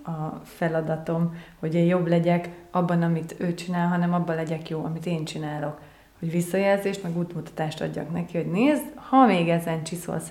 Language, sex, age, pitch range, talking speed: Hungarian, female, 30-49, 160-185 Hz, 170 wpm